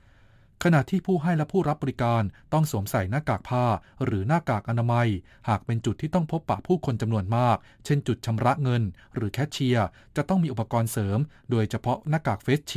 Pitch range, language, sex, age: 110-140 Hz, Thai, male, 20-39